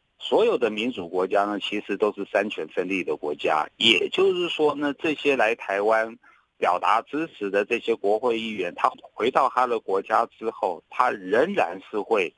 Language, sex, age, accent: Chinese, male, 50-69, native